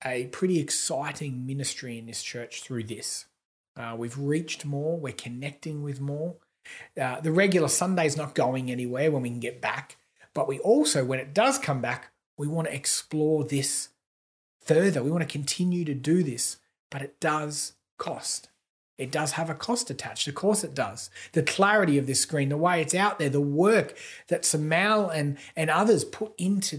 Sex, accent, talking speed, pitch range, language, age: male, Australian, 190 wpm, 135-175 Hz, English, 30-49